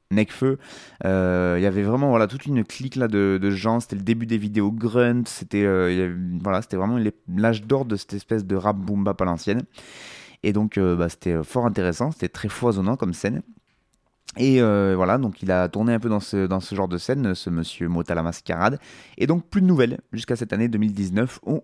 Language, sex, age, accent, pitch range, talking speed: French, male, 20-39, French, 95-120 Hz, 210 wpm